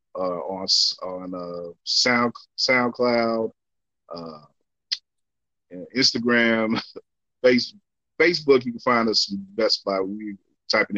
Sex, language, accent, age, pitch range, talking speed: male, English, American, 30-49, 100-125 Hz, 105 wpm